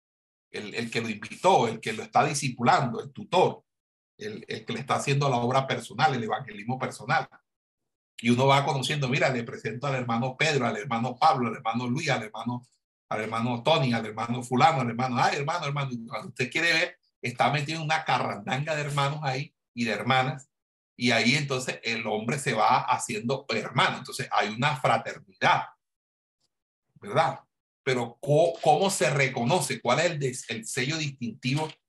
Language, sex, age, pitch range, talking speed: Spanish, male, 60-79, 120-145 Hz, 175 wpm